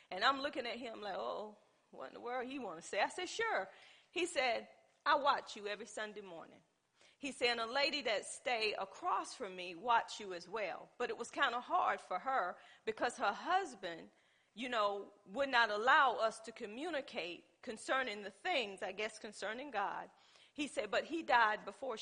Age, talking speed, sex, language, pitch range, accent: 40-59, 200 wpm, female, English, 210-285 Hz, American